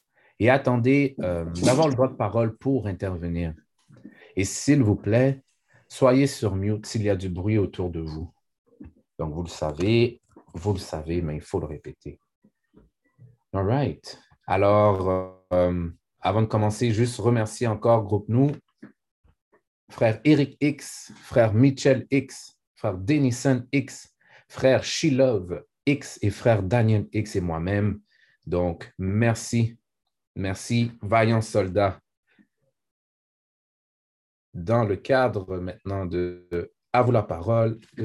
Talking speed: 135 wpm